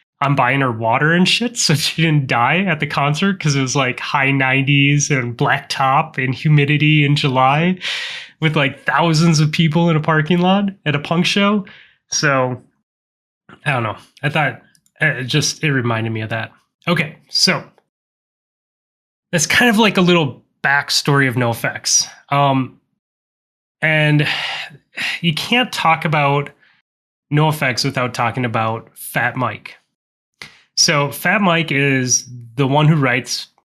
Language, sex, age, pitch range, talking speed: English, male, 20-39, 125-160 Hz, 145 wpm